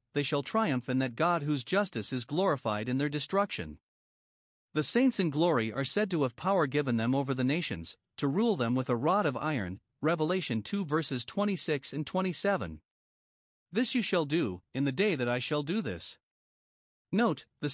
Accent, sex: American, male